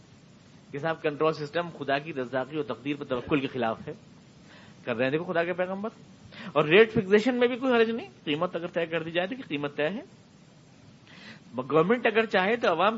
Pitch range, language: 145-190 Hz, Urdu